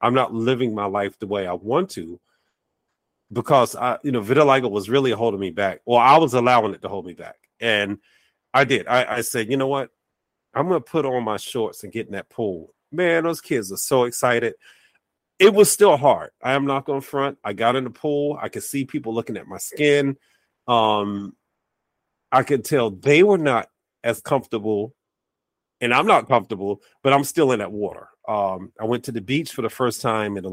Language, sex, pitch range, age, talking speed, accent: English, male, 110-140 Hz, 40-59, 215 wpm, American